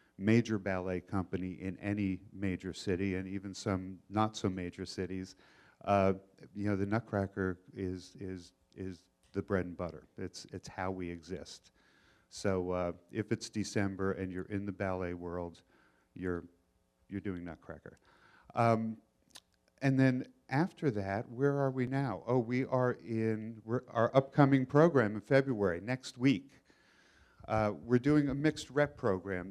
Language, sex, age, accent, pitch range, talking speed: English, male, 50-69, American, 95-115 Hz, 150 wpm